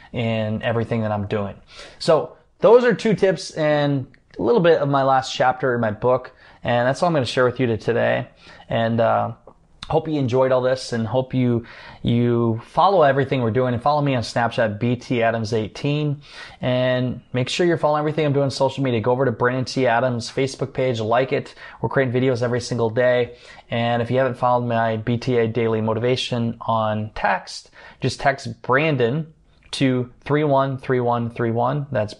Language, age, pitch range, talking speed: English, 20-39, 115-135 Hz, 175 wpm